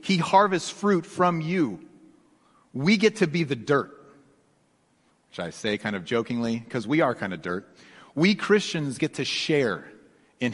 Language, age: English, 40-59